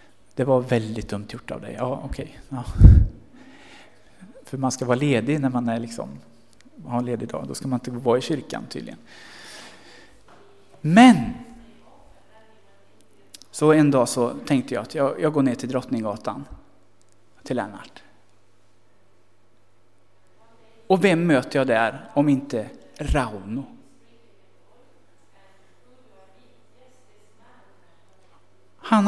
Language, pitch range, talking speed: Swedish, 115-165 Hz, 120 wpm